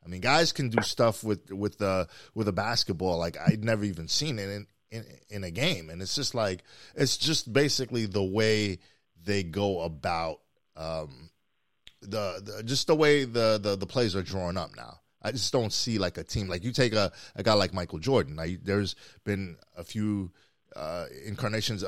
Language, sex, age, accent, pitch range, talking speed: English, male, 30-49, American, 95-135 Hz, 195 wpm